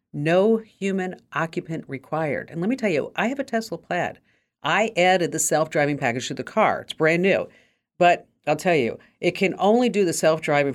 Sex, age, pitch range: female, 50-69, 135-190 Hz